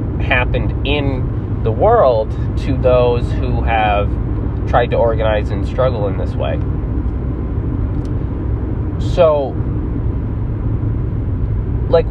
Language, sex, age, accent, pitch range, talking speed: English, male, 20-39, American, 105-125 Hz, 90 wpm